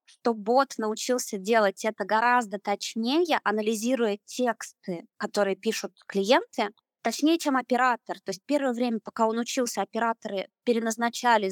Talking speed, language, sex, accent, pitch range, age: 125 wpm, Russian, female, native, 205-245 Hz, 20-39